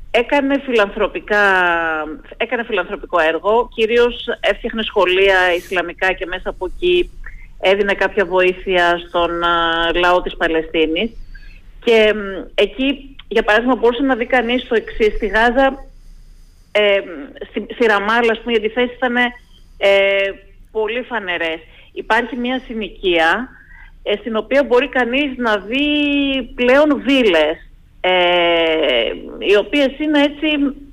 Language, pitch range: Greek, 185-255 Hz